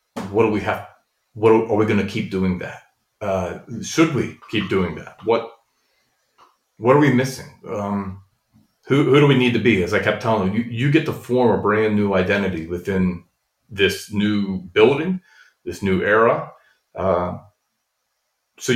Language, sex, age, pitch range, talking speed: English, male, 40-59, 95-125 Hz, 175 wpm